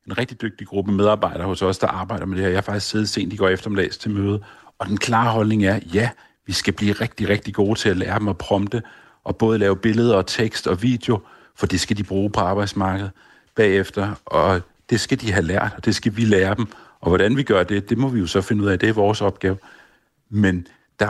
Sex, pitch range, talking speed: male, 100-115 Hz, 245 wpm